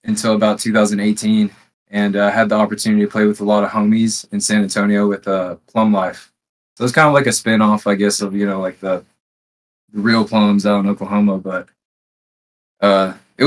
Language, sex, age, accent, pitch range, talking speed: English, male, 20-39, American, 100-115 Hz, 205 wpm